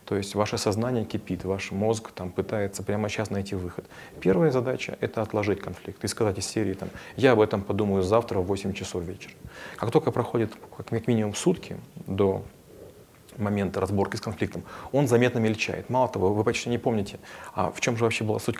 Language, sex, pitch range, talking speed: Russian, male, 100-120 Hz, 185 wpm